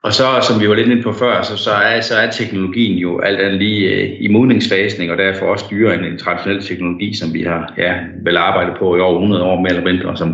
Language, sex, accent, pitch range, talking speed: Danish, male, native, 90-110 Hz, 265 wpm